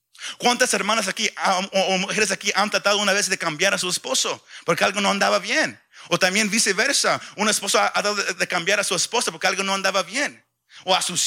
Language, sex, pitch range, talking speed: Spanish, male, 190-225 Hz, 215 wpm